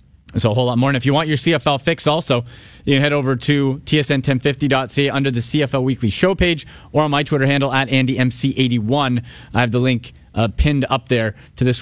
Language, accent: English, American